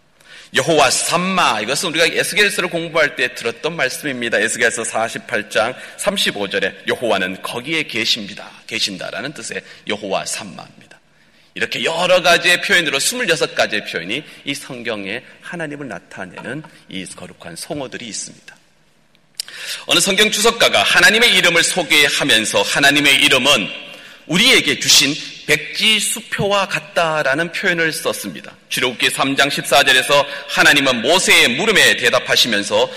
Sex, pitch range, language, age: male, 140-195 Hz, Korean, 30-49